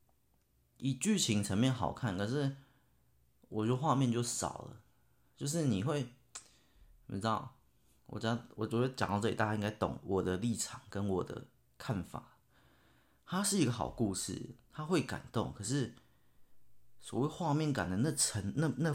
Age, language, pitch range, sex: 30-49, Chinese, 95-125 Hz, male